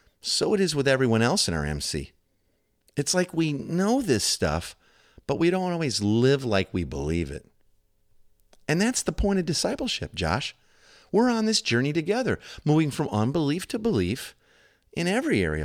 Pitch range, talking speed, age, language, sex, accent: 100-165 Hz, 170 wpm, 50-69, English, male, American